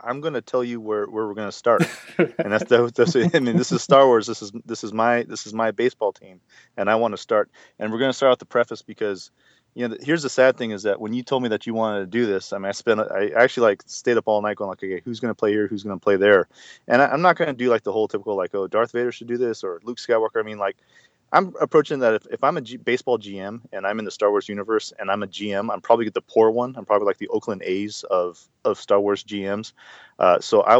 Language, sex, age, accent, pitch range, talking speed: English, male, 30-49, American, 100-125 Hz, 280 wpm